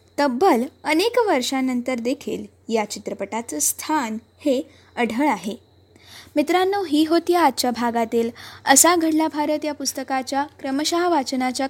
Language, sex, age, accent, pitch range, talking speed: Marathi, female, 20-39, native, 245-335 Hz, 115 wpm